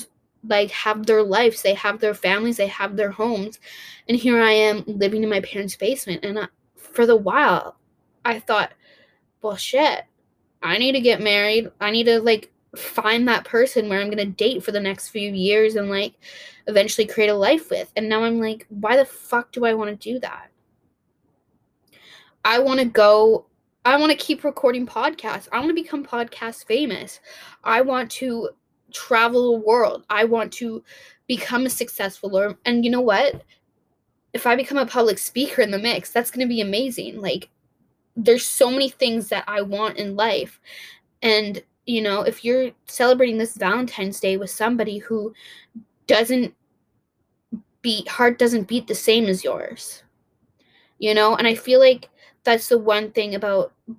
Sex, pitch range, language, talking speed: female, 210-245 Hz, English, 175 wpm